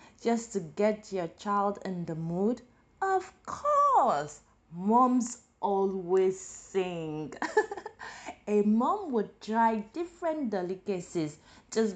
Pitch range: 165-225 Hz